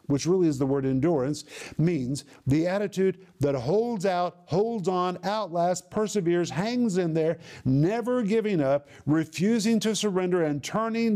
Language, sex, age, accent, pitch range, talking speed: English, male, 50-69, American, 145-190 Hz, 145 wpm